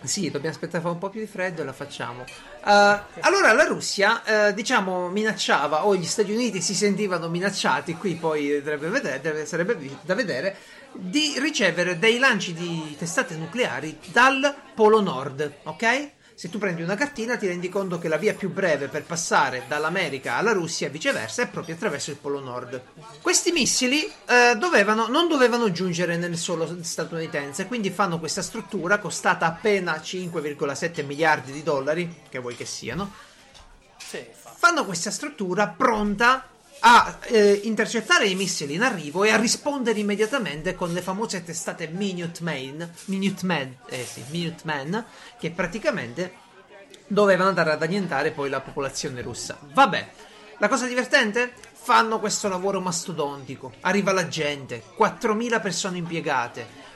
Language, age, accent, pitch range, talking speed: Italian, 40-59, native, 160-220 Hz, 150 wpm